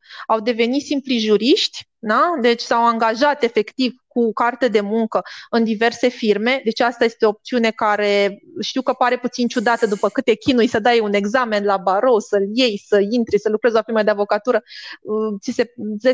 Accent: native